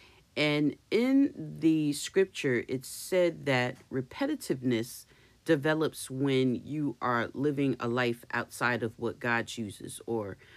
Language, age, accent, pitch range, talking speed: English, 40-59, American, 115-135 Hz, 120 wpm